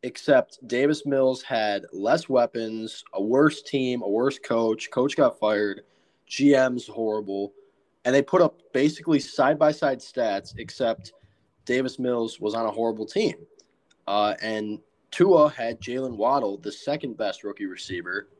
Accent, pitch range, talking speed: American, 105-150 Hz, 135 wpm